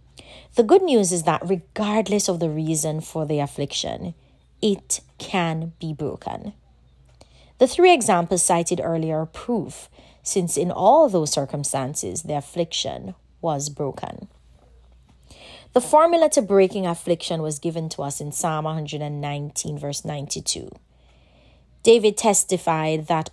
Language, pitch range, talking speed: English, 145-190 Hz, 125 wpm